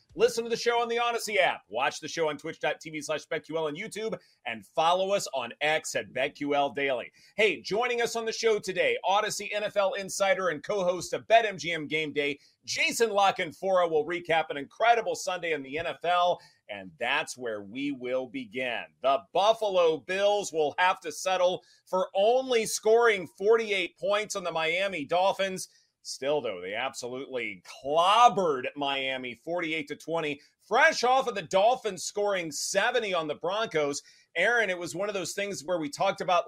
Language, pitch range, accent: English, 150-215 Hz, American